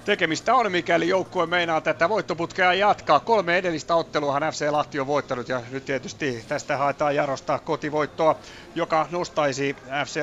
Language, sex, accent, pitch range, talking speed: Finnish, male, native, 130-150 Hz, 145 wpm